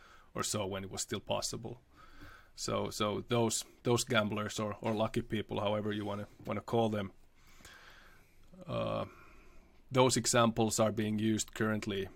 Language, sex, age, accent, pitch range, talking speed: English, male, 20-39, Finnish, 100-115 Hz, 145 wpm